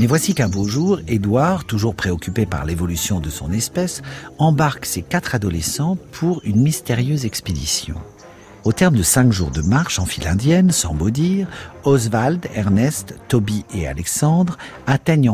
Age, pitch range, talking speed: 50-69, 95-145 Hz, 155 wpm